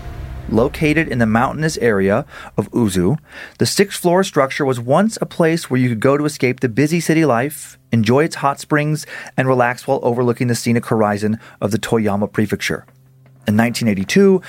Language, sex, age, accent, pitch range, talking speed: English, male, 30-49, American, 115-140 Hz, 170 wpm